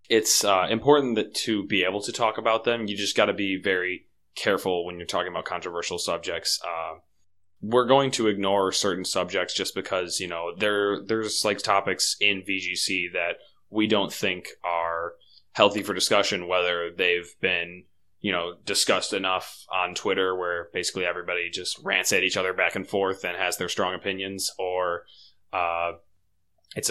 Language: English